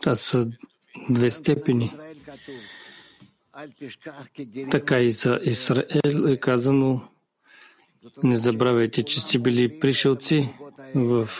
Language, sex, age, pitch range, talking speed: English, male, 40-59, 120-140 Hz, 85 wpm